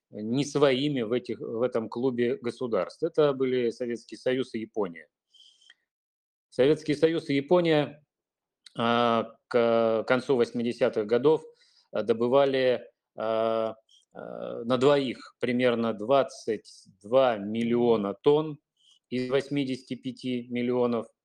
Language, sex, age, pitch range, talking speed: Russian, male, 30-49, 115-145 Hz, 100 wpm